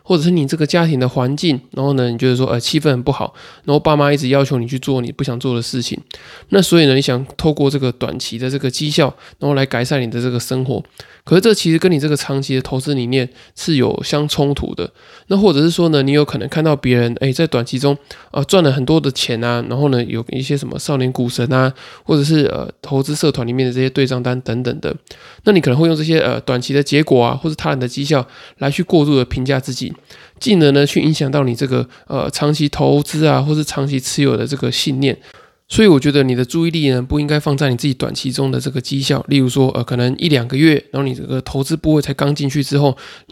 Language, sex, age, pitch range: Chinese, male, 20-39, 130-150 Hz